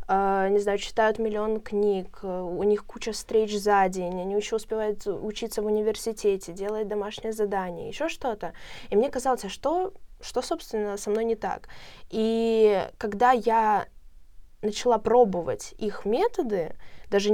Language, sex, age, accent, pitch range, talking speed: Russian, female, 20-39, native, 195-225 Hz, 140 wpm